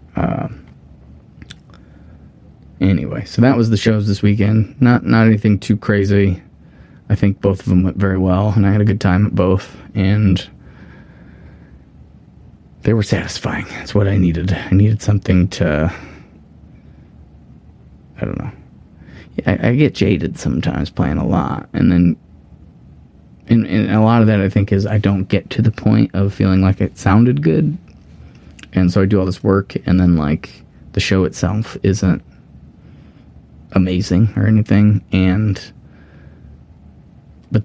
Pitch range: 85-105 Hz